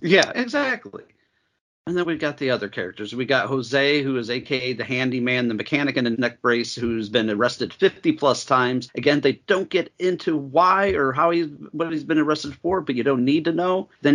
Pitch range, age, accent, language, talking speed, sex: 115-150 Hz, 40-59, American, English, 210 wpm, male